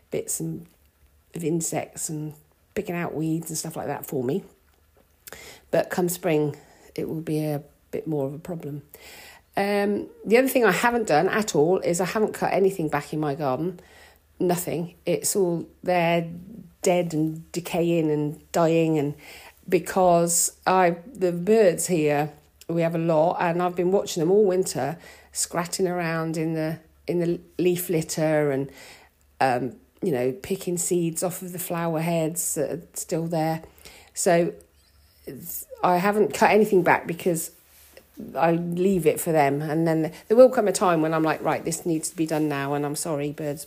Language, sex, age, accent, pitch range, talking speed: English, female, 40-59, British, 150-185 Hz, 175 wpm